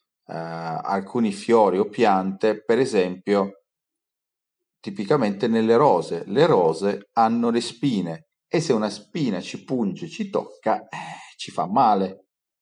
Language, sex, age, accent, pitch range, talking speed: Italian, male, 40-59, native, 95-140 Hz, 130 wpm